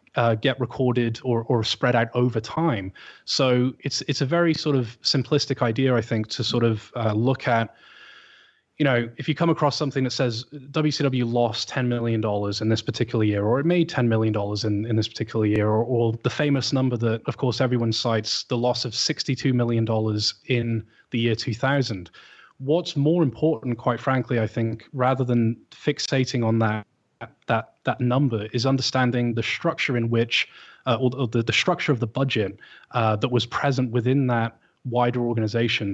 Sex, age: male, 20-39